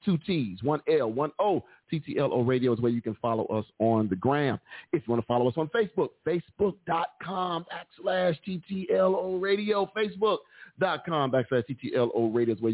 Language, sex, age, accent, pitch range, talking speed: English, male, 40-59, American, 130-160 Hz, 165 wpm